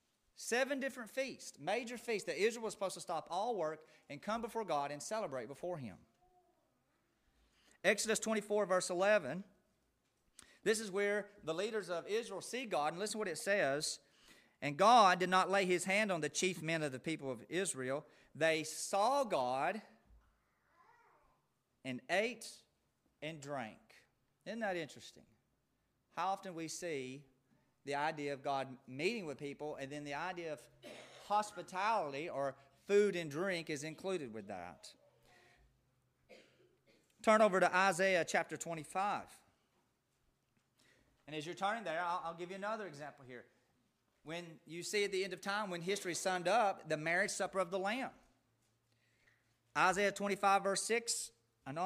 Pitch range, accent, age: 145-205 Hz, American, 40-59